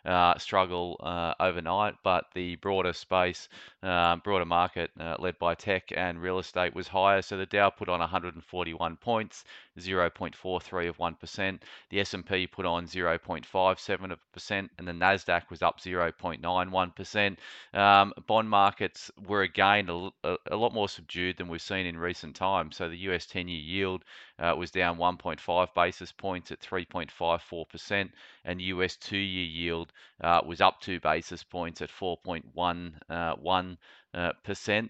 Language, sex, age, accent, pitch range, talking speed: English, male, 30-49, Australian, 85-95 Hz, 145 wpm